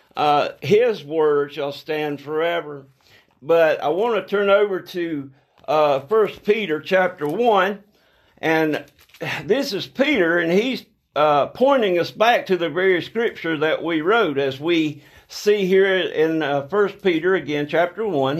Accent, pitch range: American, 150-210 Hz